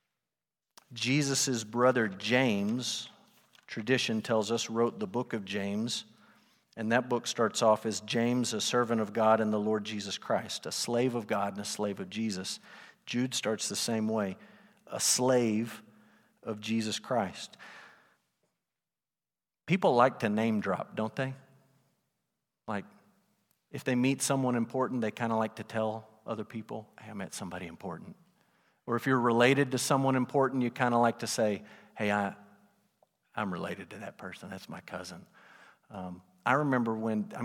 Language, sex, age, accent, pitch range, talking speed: English, male, 50-69, American, 110-140 Hz, 155 wpm